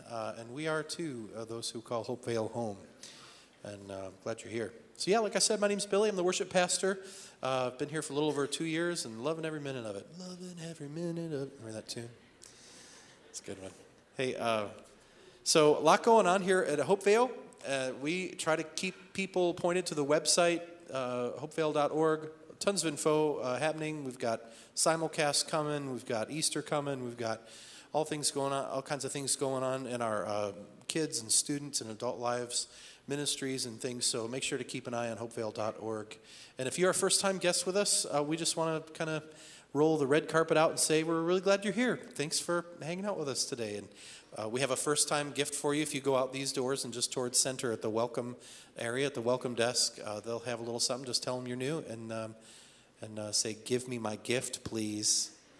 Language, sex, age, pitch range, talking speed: English, male, 30-49, 120-160 Hz, 225 wpm